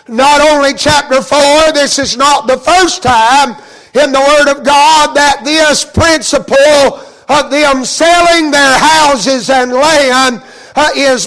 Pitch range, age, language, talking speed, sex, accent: 270-310 Hz, 50-69, English, 140 wpm, male, American